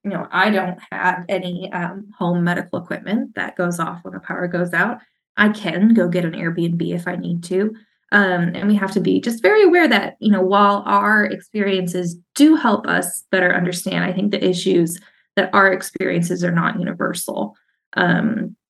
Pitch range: 175-205 Hz